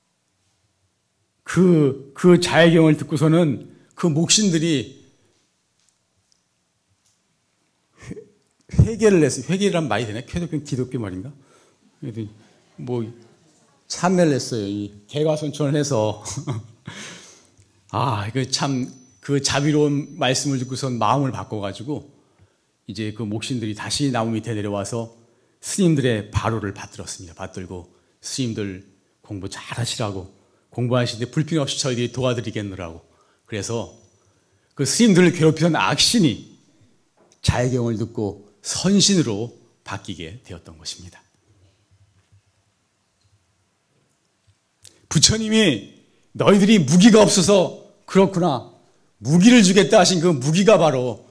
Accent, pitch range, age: native, 105-155 Hz, 40-59